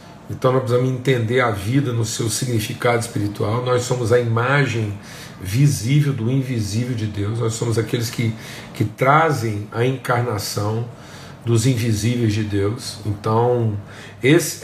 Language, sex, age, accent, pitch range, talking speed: Portuguese, male, 50-69, Brazilian, 115-150 Hz, 135 wpm